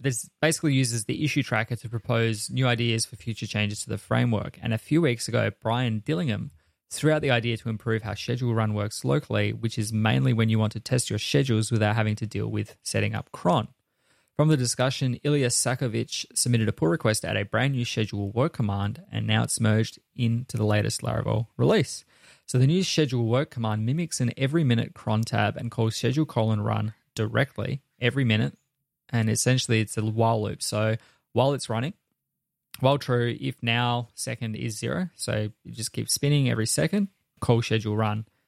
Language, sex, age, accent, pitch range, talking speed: English, male, 20-39, Australian, 110-130 Hz, 195 wpm